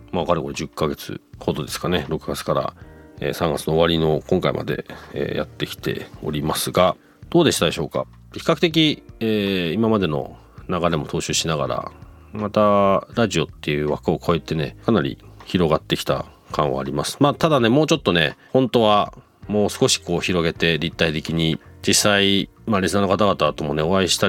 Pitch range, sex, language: 80-115 Hz, male, Japanese